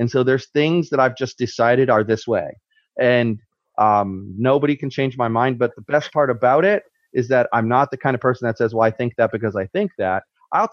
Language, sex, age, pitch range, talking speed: English, male, 30-49, 115-155 Hz, 240 wpm